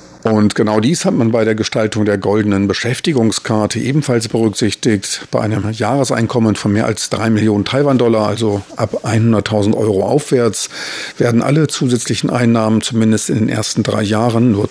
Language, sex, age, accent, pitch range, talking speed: German, male, 50-69, German, 105-120 Hz, 155 wpm